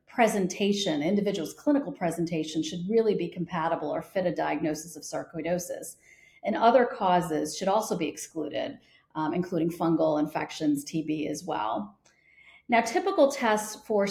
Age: 40-59